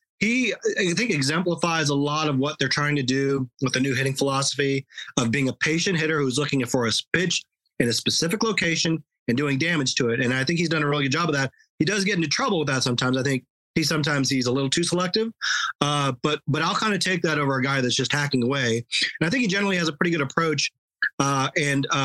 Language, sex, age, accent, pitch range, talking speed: English, male, 30-49, American, 135-175 Hz, 250 wpm